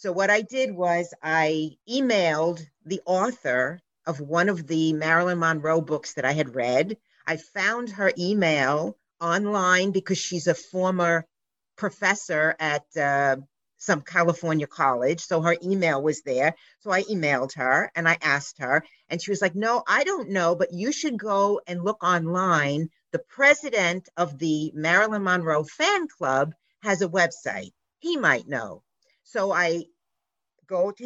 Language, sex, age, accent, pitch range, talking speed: English, female, 50-69, American, 155-195 Hz, 155 wpm